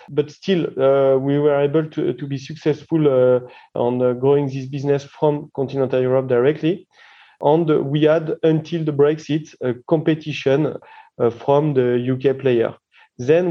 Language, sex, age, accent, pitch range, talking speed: English, male, 30-49, French, 130-150 Hz, 150 wpm